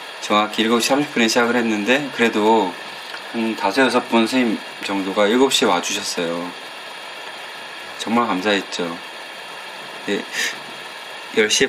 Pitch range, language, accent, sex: 100-135 Hz, Korean, native, male